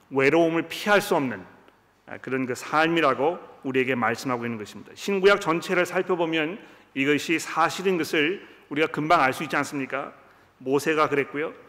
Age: 40-59